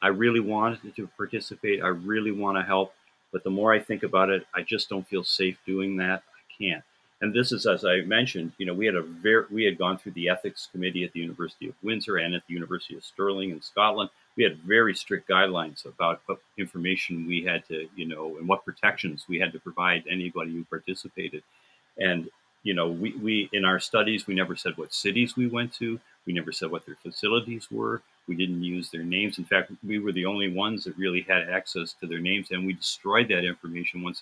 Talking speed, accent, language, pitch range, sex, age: 225 wpm, American, English, 90-105 Hz, male, 50-69